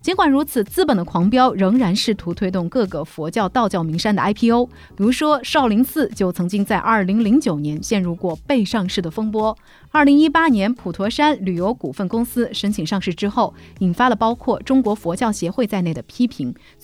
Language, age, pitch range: Chinese, 30-49, 175-250 Hz